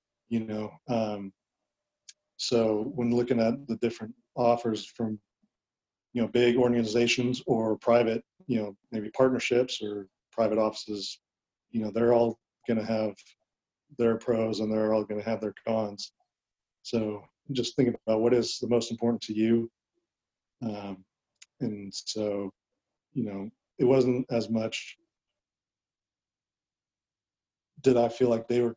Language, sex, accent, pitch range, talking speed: English, male, American, 110-125 Hz, 140 wpm